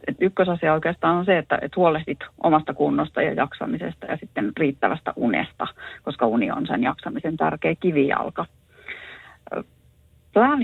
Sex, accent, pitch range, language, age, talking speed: female, native, 150-175 Hz, Finnish, 30-49, 135 wpm